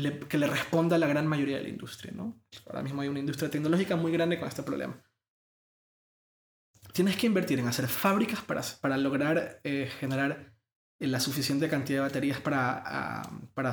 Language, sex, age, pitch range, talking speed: Spanish, male, 20-39, 135-165 Hz, 185 wpm